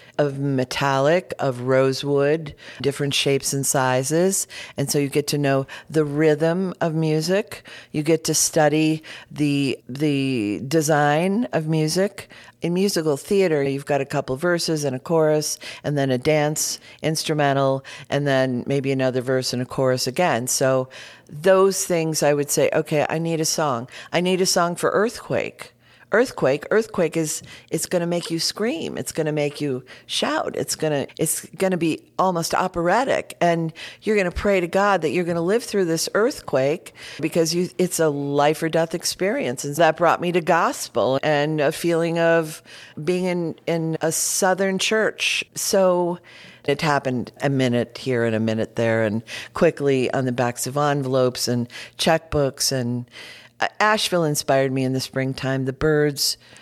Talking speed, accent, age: 170 wpm, American, 50-69